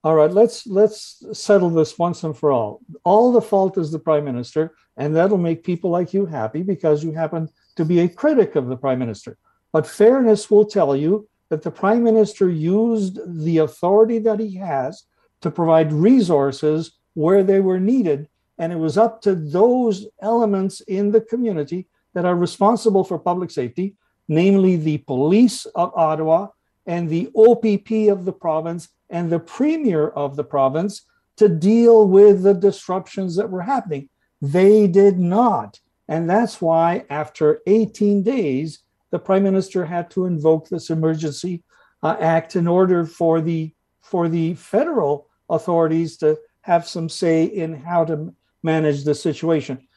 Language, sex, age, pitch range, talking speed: English, male, 60-79, 160-205 Hz, 160 wpm